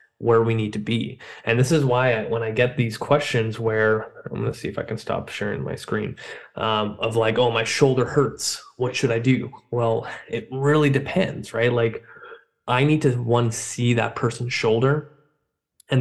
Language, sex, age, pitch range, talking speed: English, male, 20-39, 115-130 Hz, 195 wpm